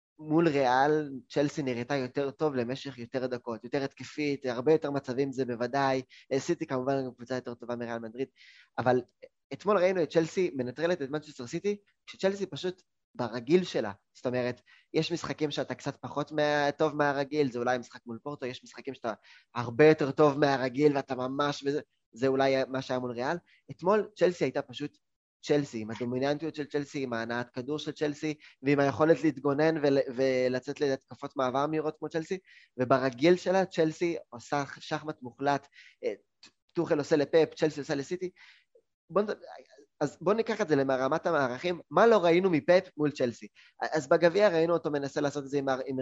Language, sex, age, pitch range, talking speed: Hebrew, male, 20-39, 130-155 Hz, 160 wpm